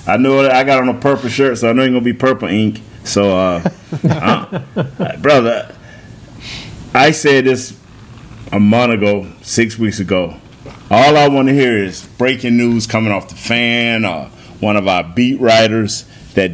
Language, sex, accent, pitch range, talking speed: English, male, American, 100-125 Hz, 180 wpm